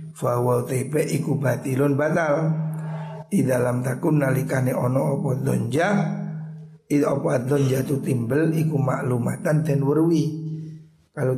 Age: 50-69